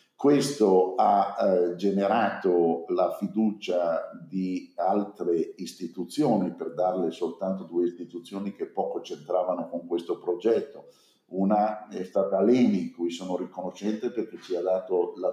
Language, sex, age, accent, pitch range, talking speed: Italian, male, 50-69, native, 90-100 Hz, 125 wpm